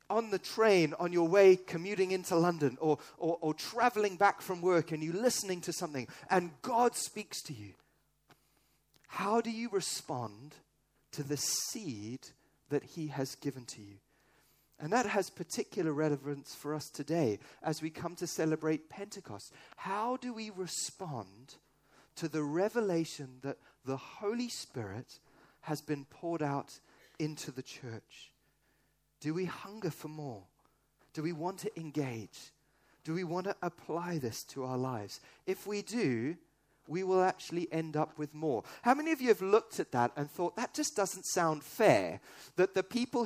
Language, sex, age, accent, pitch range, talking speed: English, male, 30-49, British, 145-190 Hz, 165 wpm